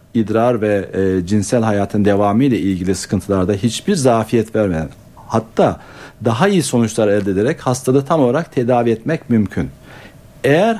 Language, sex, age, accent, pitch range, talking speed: Turkish, male, 60-79, native, 105-135 Hz, 140 wpm